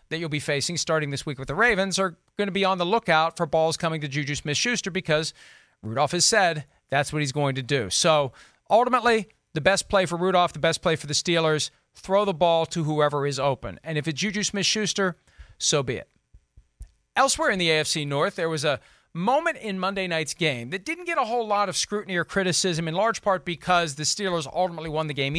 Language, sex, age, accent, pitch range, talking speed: English, male, 40-59, American, 155-200 Hz, 220 wpm